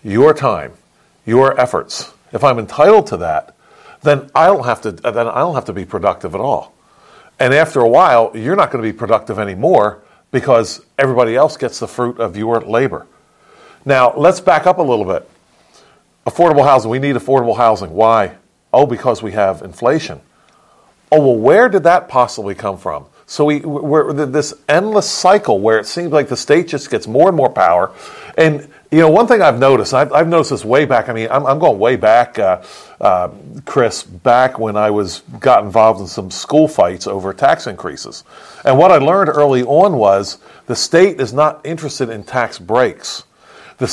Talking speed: 190 wpm